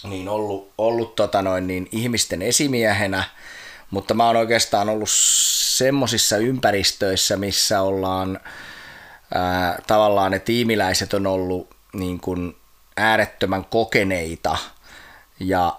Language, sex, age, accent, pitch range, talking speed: Finnish, male, 20-39, native, 95-110 Hz, 85 wpm